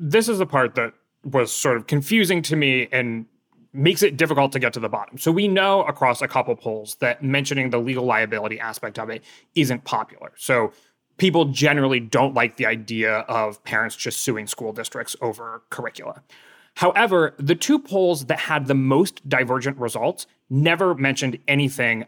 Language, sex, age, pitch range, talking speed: English, male, 30-49, 120-155 Hz, 175 wpm